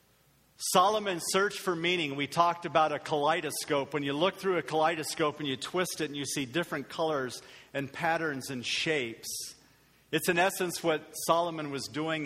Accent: American